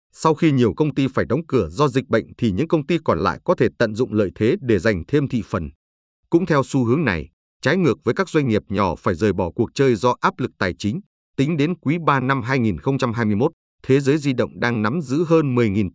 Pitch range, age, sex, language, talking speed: 105-135 Hz, 30-49, male, Vietnamese, 245 wpm